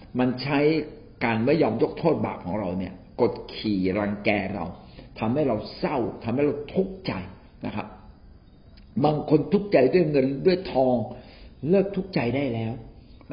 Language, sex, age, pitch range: Thai, male, 60-79, 115-190 Hz